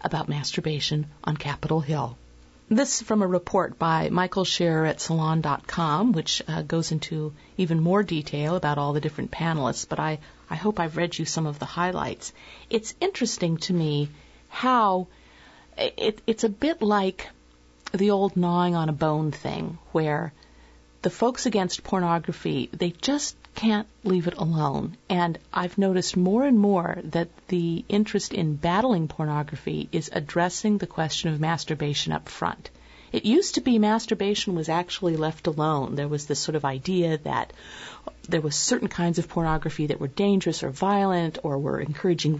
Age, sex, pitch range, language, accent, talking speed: 50-69, female, 155-195 Hz, English, American, 165 wpm